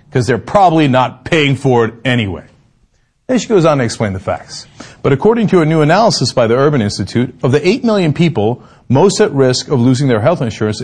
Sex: male